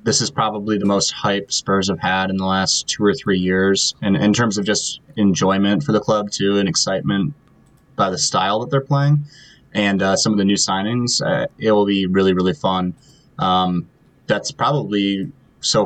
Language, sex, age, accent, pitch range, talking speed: English, male, 20-39, American, 95-115 Hz, 195 wpm